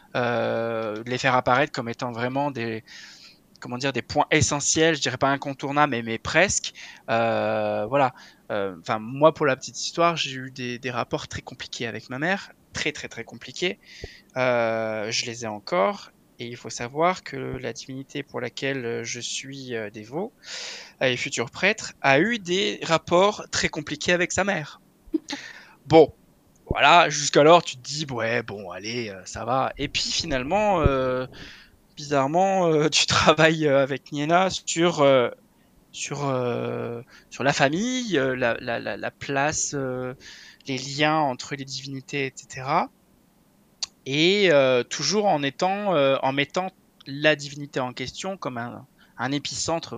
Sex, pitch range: male, 120-160 Hz